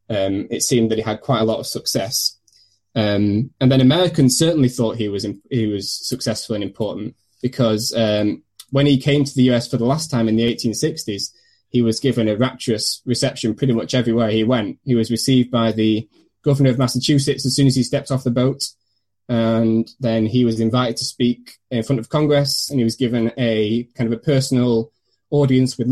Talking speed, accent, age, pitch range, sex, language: 205 wpm, British, 10-29, 115-130 Hz, male, English